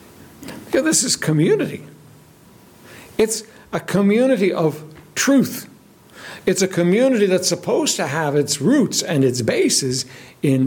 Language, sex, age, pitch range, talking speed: English, male, 60-79, 145-215 Hz, 120 wpm